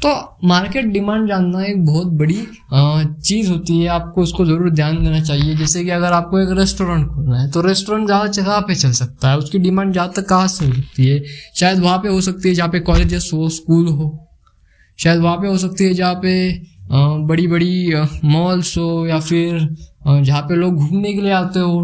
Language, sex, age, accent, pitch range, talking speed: Hindi, male, 20-39, native, 150-190 Hz, 205 wpm